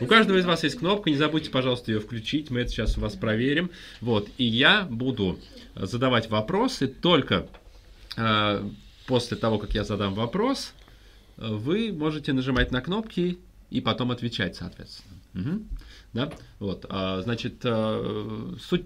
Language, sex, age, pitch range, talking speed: Russian, male, 30-49, 105-155 Hz, 150 wpm